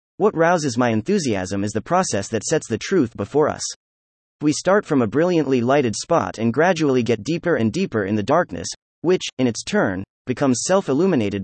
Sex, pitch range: male, 110-155 Hz